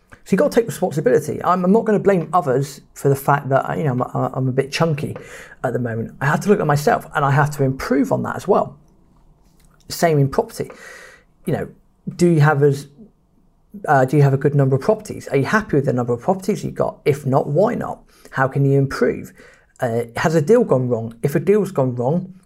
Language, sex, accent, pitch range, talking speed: English, male, British, 145-205 Hz, 245 wpm